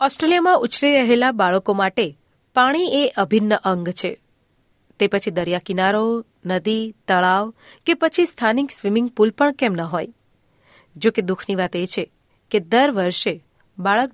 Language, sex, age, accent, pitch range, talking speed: Gujarati, female, 30-49, native, 185-240 Hz, 145 wpm